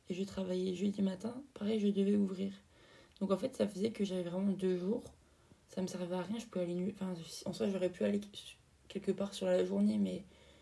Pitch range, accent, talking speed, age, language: 180-200 Hz, French, 230 wpm, 20-39, French